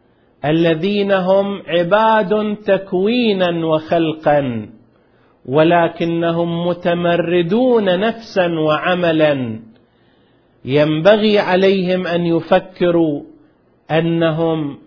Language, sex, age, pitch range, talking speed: Arabic, male, 40-59, 155-195 Hz, 55 wpm